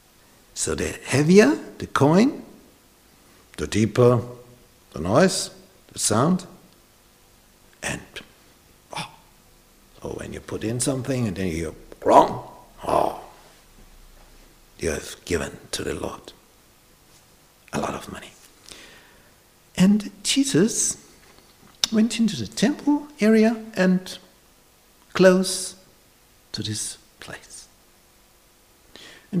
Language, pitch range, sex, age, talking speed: English, 120-190 Hz, male, 60-79, 95 wpm